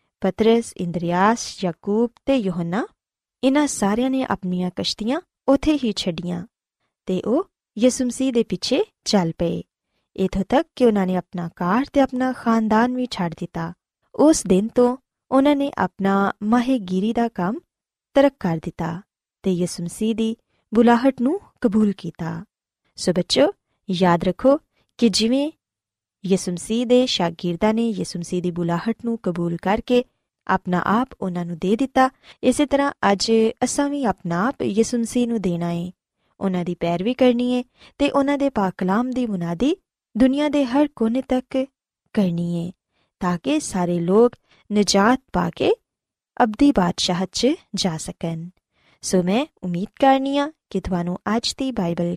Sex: female